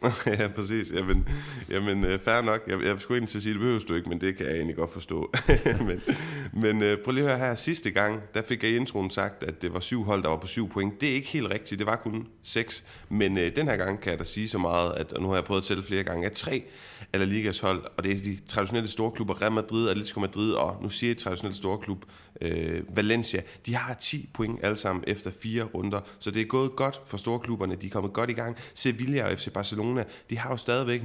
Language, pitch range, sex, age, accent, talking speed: Danish, 95-115 Hz, male, 30-49, native, 260 wpm